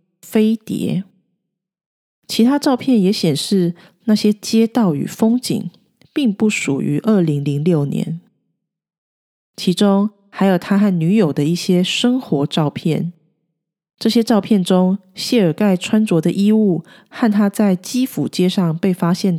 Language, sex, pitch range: Chinese, female, 165-220 Hz